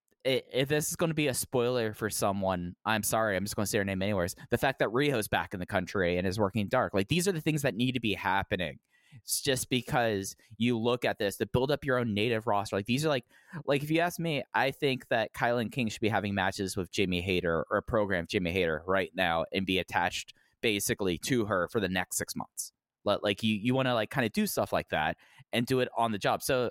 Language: English